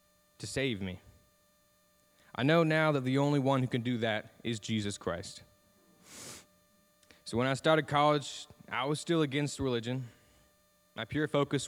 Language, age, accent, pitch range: English, 20-39, American, 105-135 Hz